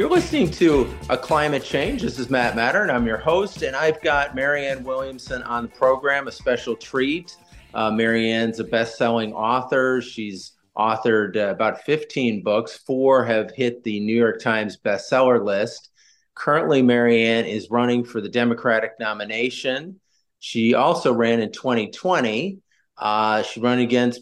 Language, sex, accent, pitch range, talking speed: English, male, American, 110-130 Hz, 155 wpm